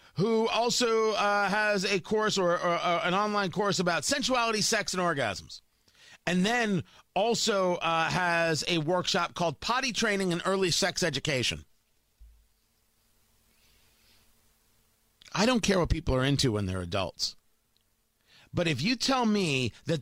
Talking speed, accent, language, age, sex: 140 wpm, American, English, 40-59, male